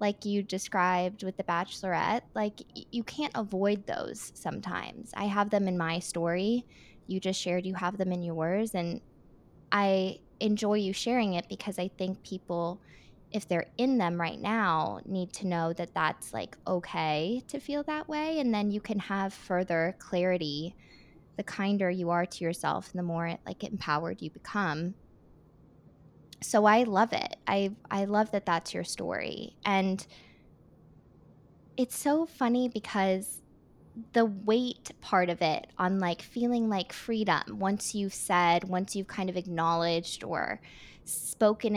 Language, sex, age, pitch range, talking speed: English, female, 20-39, 175-215 Hz, 155 wpm